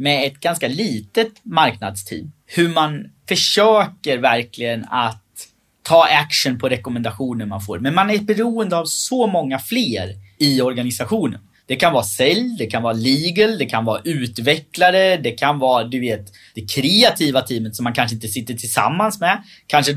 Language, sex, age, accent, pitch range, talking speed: Swedish, male, 20-39, native, 120-170 Hz, 160 wpm